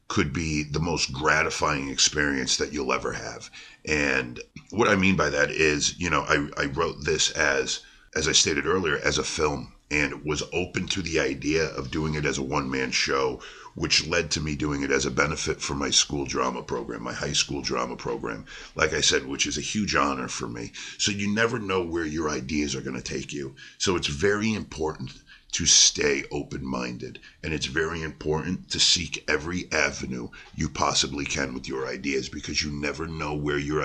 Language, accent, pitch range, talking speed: English, American, 70-80 Hz, 200 wpm